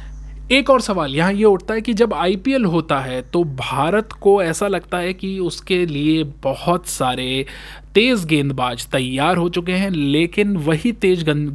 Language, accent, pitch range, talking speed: Hindi, native, 140-180 Hz, 170 wpm